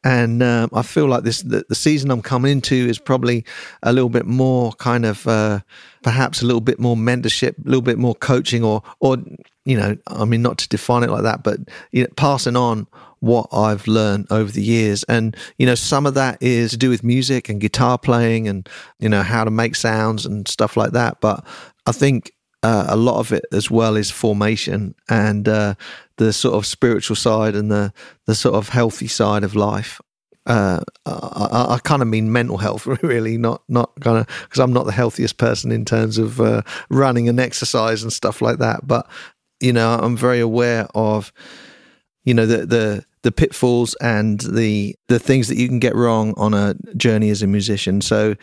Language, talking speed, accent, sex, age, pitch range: English, 205 wpm, British, male, 40-59, 110-125 Hz